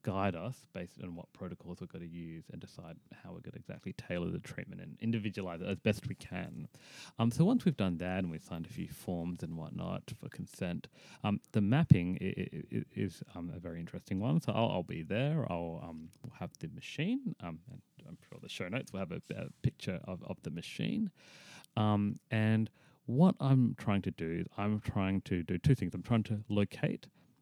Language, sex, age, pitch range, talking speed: English, male, 30-49, 90-115 Hz, 215 wpm